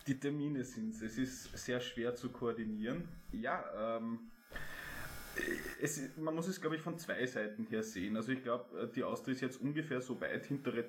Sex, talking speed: male, 185 wpm